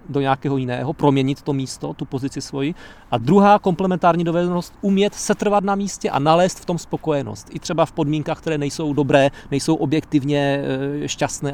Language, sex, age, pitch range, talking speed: English, male, 40-59, 135-175 Hz, 165 wpm